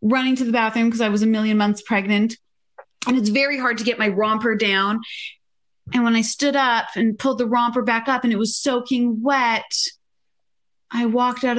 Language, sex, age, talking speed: English, female, 30-49, 200 wpm